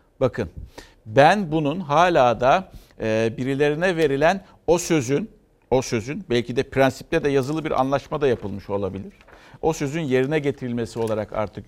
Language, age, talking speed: Turkish, 60-79, 145 wpm